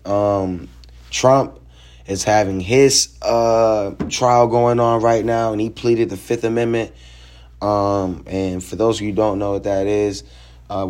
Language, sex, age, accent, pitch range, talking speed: English, male, 20-39, American, 90-110 Hz, 165 wpm